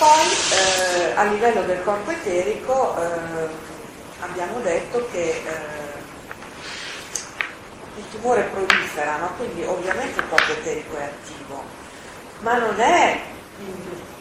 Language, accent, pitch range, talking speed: Italian, native, 165-215 Hz, 115 wpm